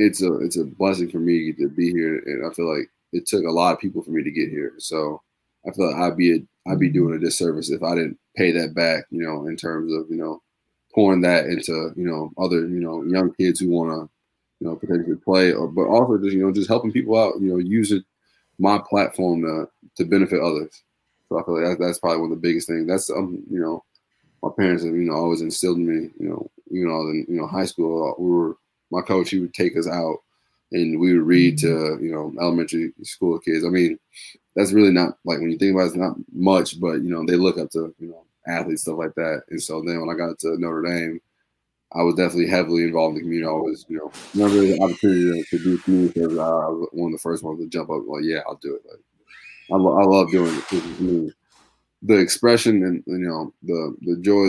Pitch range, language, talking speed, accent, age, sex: 80-95 Hz, English, 245 wpm, American, 20-39, male